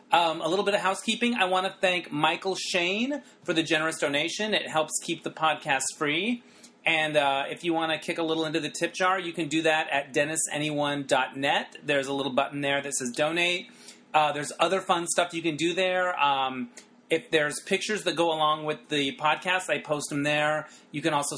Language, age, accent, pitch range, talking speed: English, 30-49, American, 150-185 Hz, 210 wpm